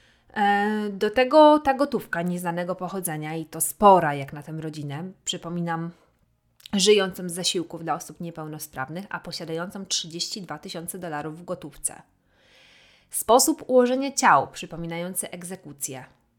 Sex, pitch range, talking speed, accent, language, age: female, 160-200 Hz, 115 wpm, native, Polish, 20-39